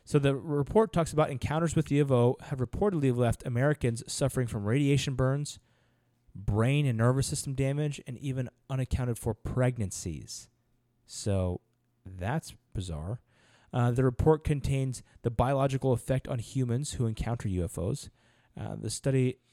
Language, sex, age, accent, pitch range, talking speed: English, male, 30-49, American, 115-135 Hz, 135 wpm